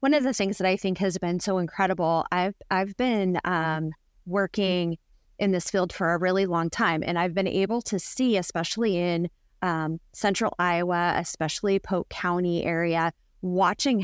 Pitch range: 170-200 Hz